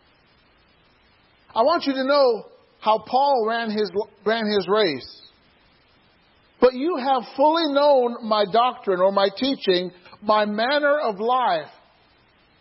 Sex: male